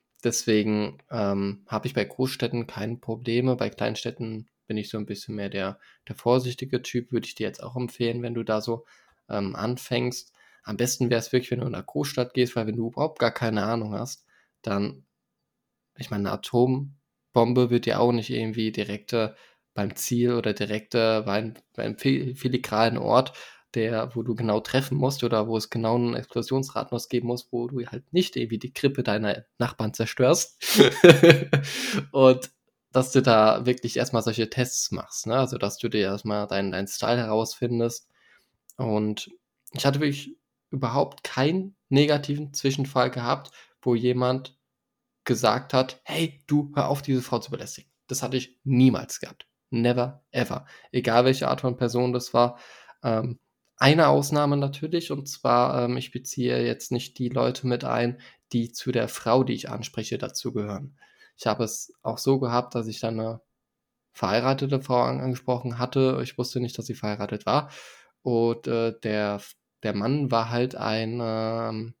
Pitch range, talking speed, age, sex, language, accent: 110-130 Hz, 170 wpm, 20-39, male, German, German